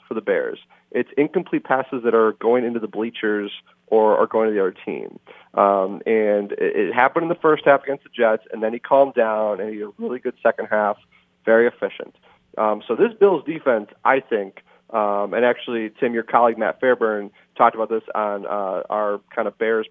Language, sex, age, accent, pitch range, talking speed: English, male, 30-49, American, 105-140 Hz, 210 wpm